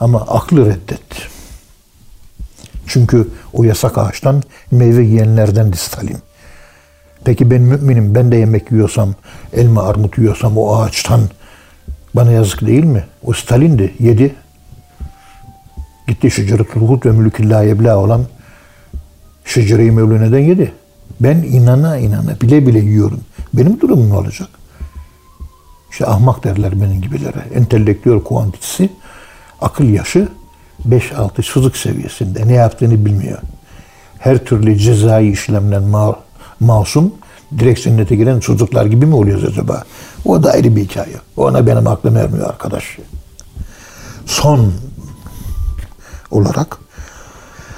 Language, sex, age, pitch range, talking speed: Turkish, male, 60-79, 95-125 Hz, 110 wpm